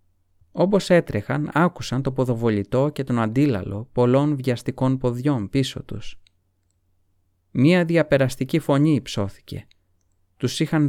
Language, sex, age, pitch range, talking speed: Greek, male, 30-49, 95-140 Hz, 105 wpm